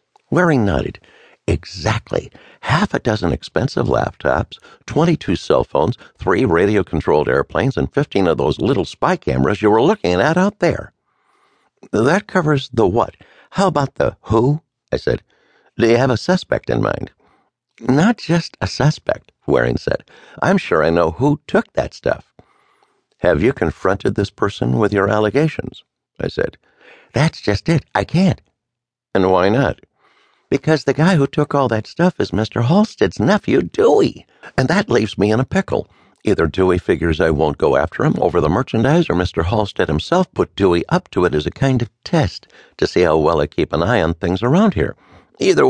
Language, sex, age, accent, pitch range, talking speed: English, male, 60-79, American, 105-175 Hz, 175 wpm